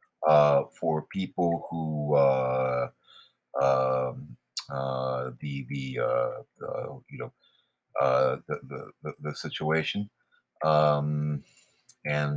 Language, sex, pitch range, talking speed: English, male, 70-80 Hz, 100 wpm